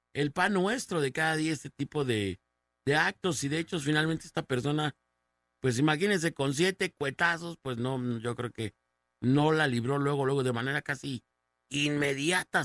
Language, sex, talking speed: Spanish, male, 170 wpm